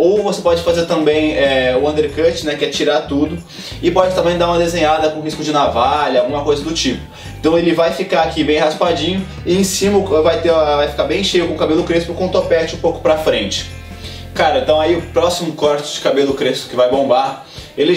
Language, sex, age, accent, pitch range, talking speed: Portuguese, male, 20-39, Brazilian, 145-170 Hz, 230 wpm